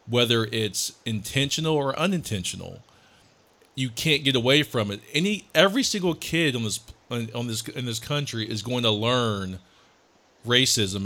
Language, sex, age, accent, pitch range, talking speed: English, male, 40-59, American, 105-130 Hz, 150 wpm